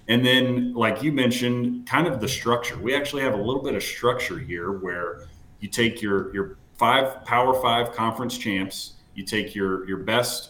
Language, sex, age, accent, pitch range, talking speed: English, male, 30-49, American, 100-125 Hz, 190 wpm